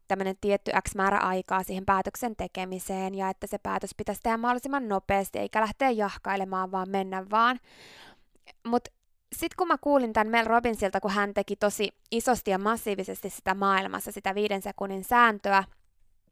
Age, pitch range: 20-39, 195-245 Hz